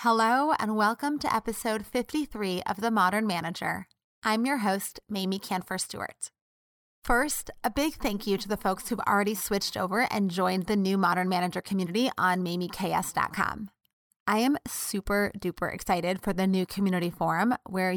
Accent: American